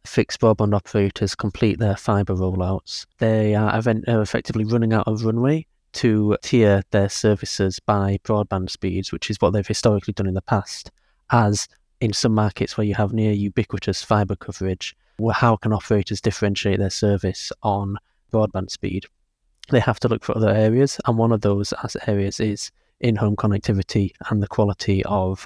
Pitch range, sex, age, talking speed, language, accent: 100-110 Hz, male, 20-39, 170 wpm, English, British